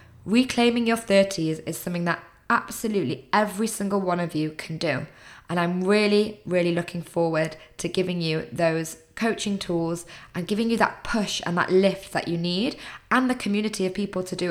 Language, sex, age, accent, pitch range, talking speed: English, female, 20-39, British, 165-200 Hz, 180 wpm